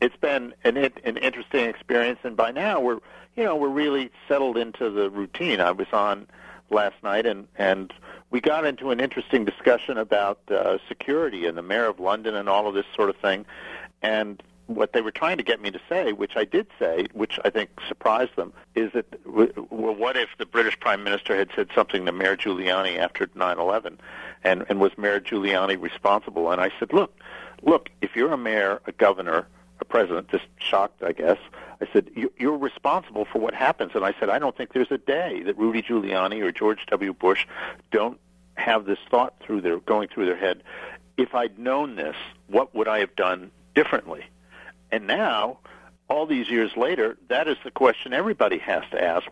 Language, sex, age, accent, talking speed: English, male, 50-69, American, 200 wpm